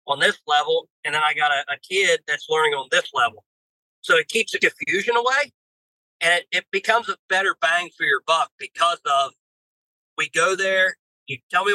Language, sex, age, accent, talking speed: English, male, 40-59, American, 200 wpm